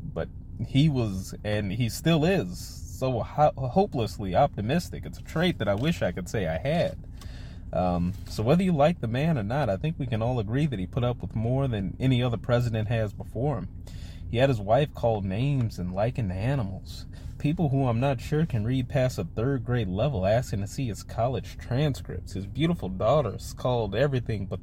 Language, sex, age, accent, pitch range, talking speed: English, male, 30-49, American, 95-140 Hz, 200 wpm